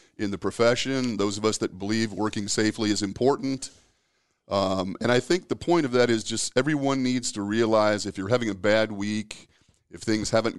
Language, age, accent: English, 40-59, American